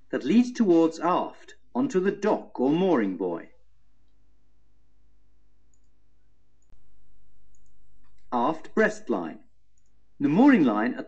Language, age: English, 50-69